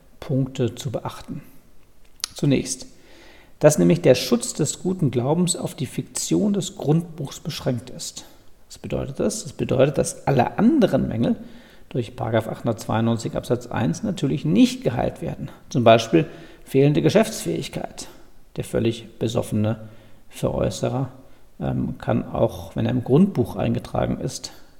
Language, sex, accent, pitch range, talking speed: German, male, German, 115-140 Hz, 130 wpm